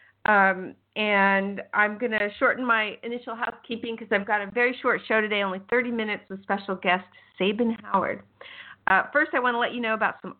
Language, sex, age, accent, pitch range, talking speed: English, female, 50-69, American, 190-225 Hz, 200 wpm